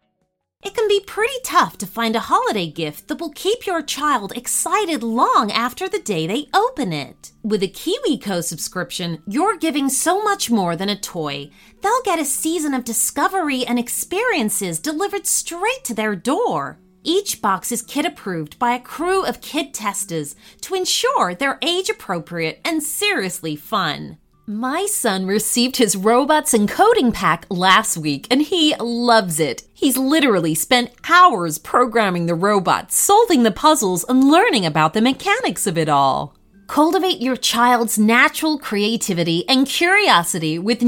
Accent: American